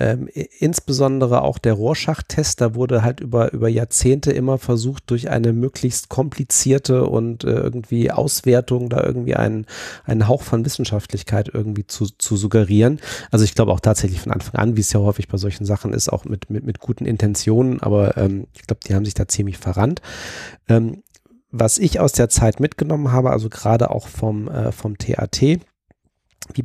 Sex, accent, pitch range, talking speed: male, German, 105-125 Hz, 170 wpm